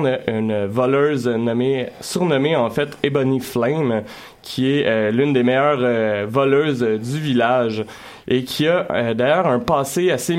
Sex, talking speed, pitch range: male, 155 wpm, 115-140 Hz